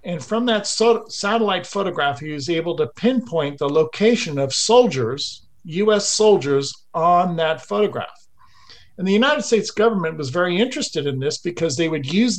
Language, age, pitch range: English, 50-69, 145-200 Hz